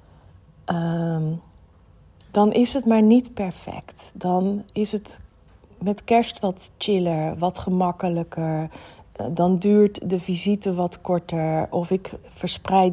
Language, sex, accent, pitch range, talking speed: Dutch, female, Dutch, 170-205 Hz, 120 wpm